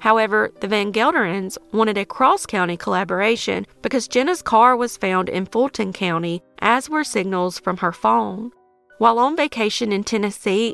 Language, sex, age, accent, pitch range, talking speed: English, female, 30-49, American, 190-245 Hz, 150 wpm